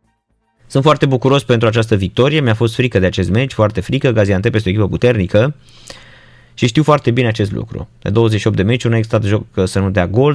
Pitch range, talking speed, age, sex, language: 100-130 Hz, 215 wpm, 20-39, male, Romanian